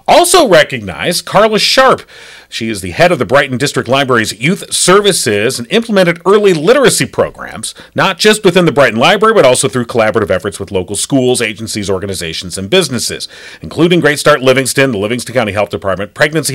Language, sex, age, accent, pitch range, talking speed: English, male, 40-59, American, 115-170 Hz, 175 wpm